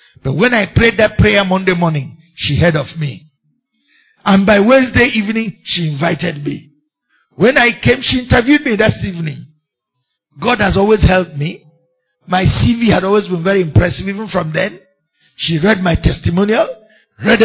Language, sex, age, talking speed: English, male, 50-69, 160 wpm